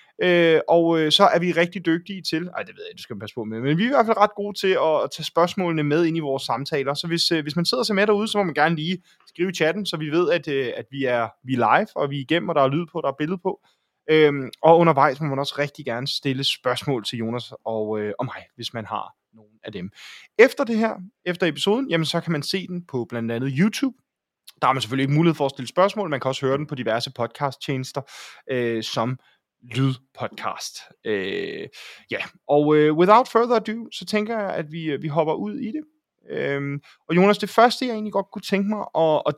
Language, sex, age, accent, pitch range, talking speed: Danish, male, 20-39, native, 135-185 Hz, 255 wpm